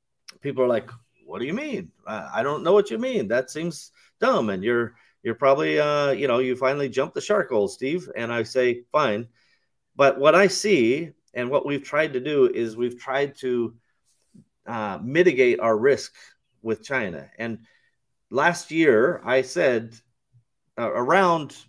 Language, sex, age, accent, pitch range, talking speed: English, male, 40-59, American, 115-155 Hz, 170 wpm